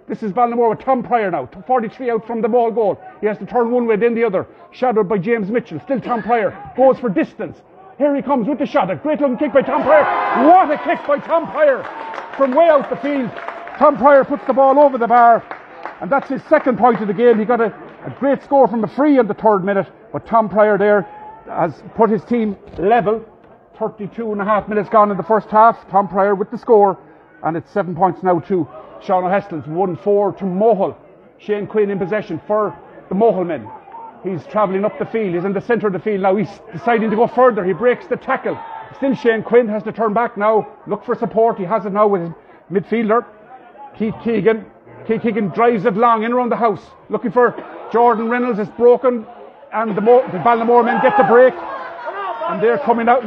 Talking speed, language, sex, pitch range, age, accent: 220 wpm, English, male, 210-245 Hz, 50-69, Irish